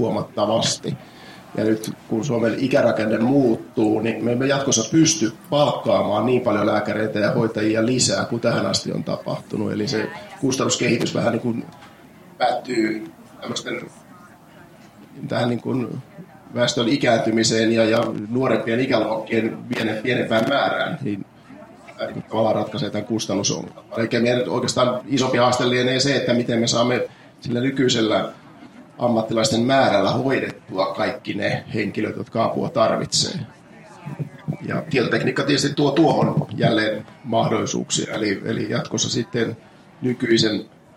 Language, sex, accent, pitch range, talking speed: Finnish, male, native, 110-130 Hz, 120 wpm